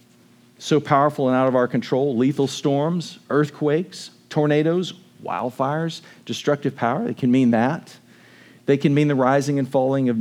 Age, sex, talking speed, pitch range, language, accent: 50-69, male, 155 wpm, 120-160 Hz, English, American